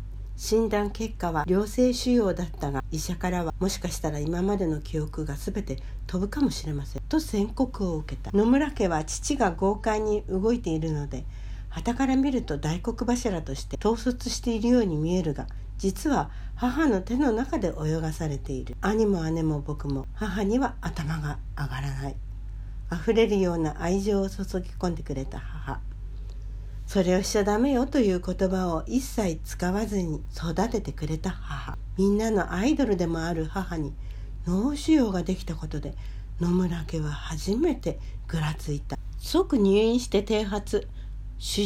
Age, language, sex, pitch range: 60-79, Japanese, female, 145-210 Hz